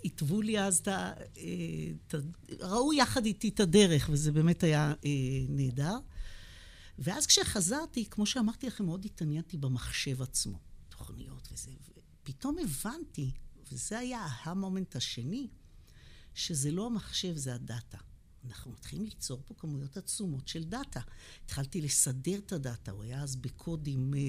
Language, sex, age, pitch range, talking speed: Hebrew, female, 60-79, 135-195 Hz, 130 wpm